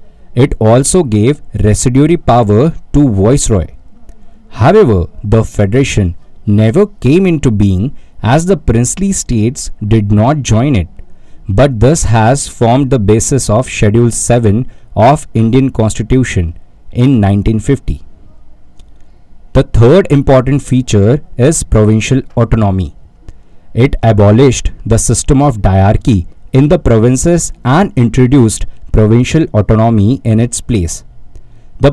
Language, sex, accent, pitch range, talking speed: English, male, Indian, 105-135 Hz, 115 wpm